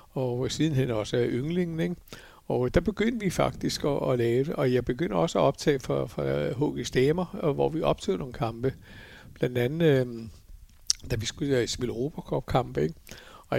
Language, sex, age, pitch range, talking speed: Danish, male, 60-79, 120-145 Hz, 165 wpm